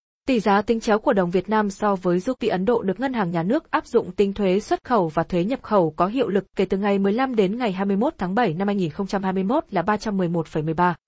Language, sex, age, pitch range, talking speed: Vietnamese, female, 20-39, 190-235 Hz, 240 wpm